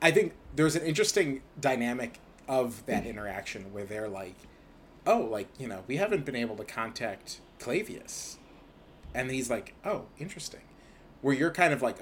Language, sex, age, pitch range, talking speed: English, male, 30-49, 110-140 Hz, 165 wpm